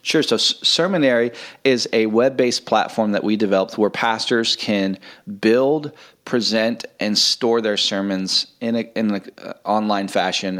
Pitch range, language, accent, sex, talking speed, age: 105-125 Hz, English, American, male, 155 wpm, 30-49